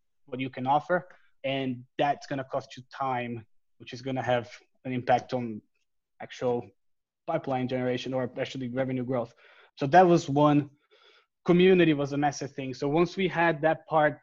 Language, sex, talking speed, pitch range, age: English, male, 175 wpm, 130-155 Hz, 20-39